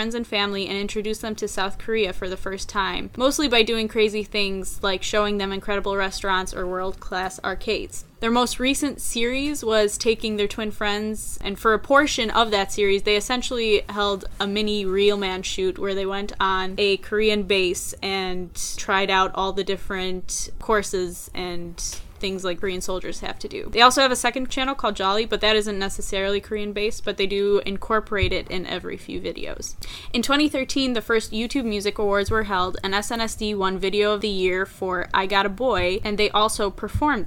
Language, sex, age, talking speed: English, female, 10-29, 190 wpm